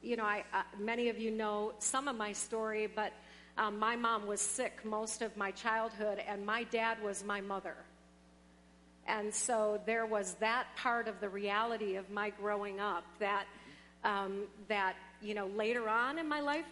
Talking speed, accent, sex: 185 wpm, American, female